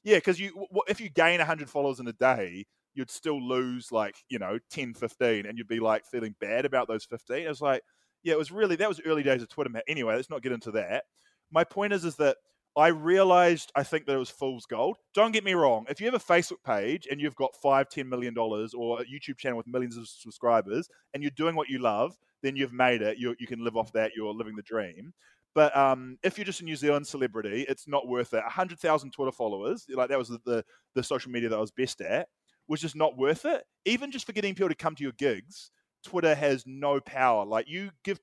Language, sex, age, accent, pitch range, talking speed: English, male, 20-39, Australian, 125-165 Hz, 245 wpm